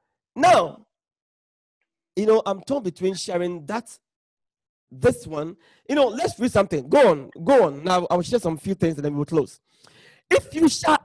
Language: English